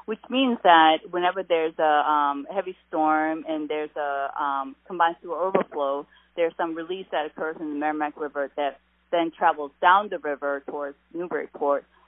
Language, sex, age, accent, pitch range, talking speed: English, female, 30-49, American, 150-180 Hz, 170 wpm